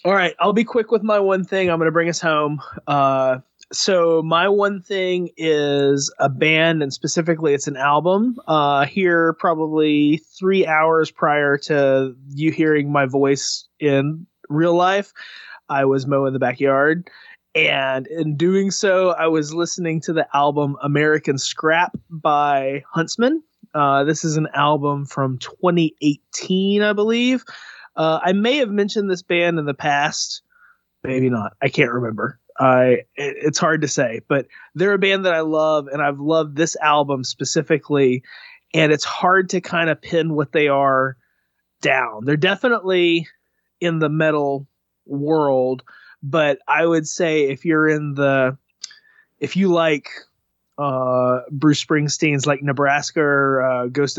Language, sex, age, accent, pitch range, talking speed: English, male, 20-39, American, 140-175 Hz, 155 wpm